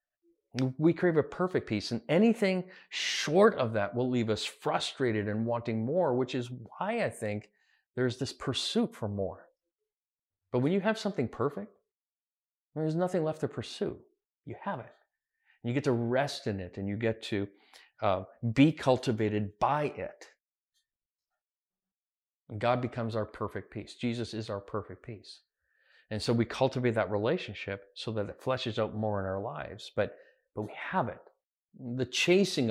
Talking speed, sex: 160 wpm, male